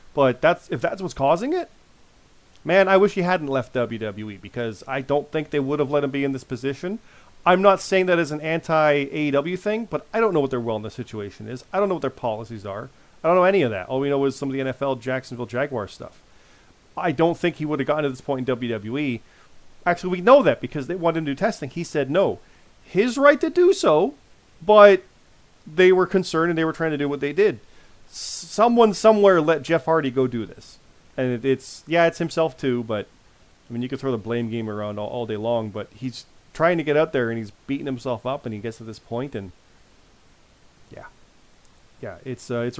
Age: 40-59